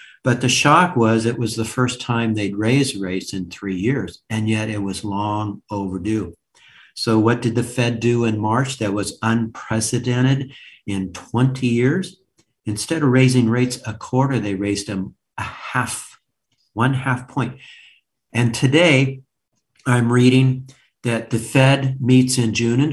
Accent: American